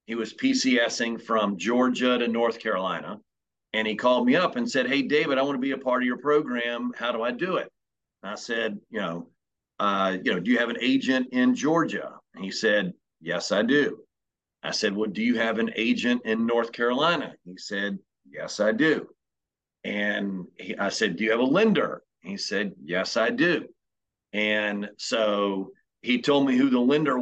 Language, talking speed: English, 190 wpm